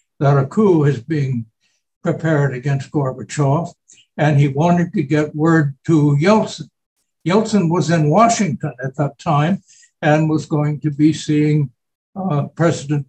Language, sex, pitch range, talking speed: English, male, 145-180 Hz, 140 wpm